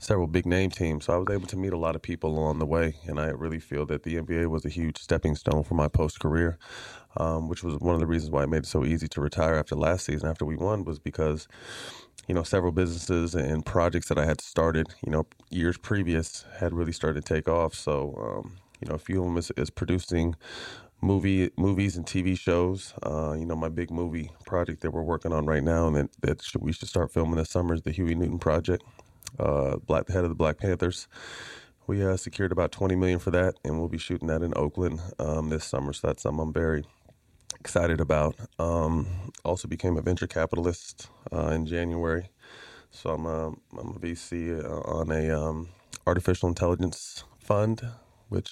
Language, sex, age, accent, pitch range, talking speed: English, male, 30-49, American, 80-90 Hz, 215 wpm